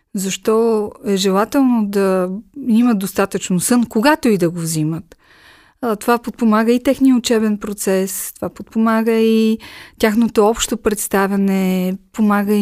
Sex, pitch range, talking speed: female, 200-260 Hz, 120 wpm